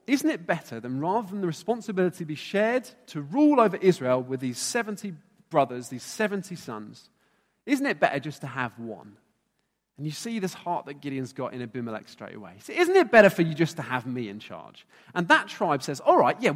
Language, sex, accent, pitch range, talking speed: English, male, British, 145-215 Hz, 215 wpm